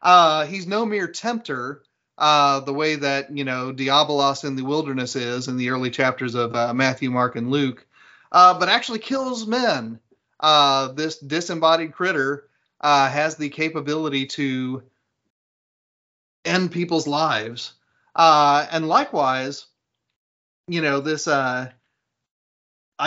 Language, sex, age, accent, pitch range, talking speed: English, male, 30-49, American, 130-160 Hz, 130 wpm